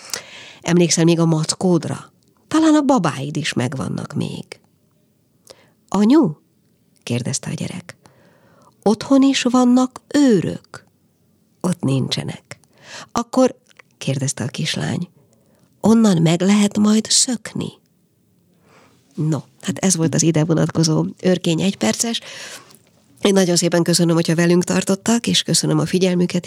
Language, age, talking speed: Hungarian, 50-69, 110 wpm